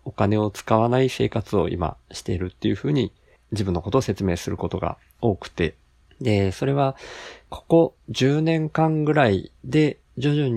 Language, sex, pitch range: Japanese, male, 85-115 Hz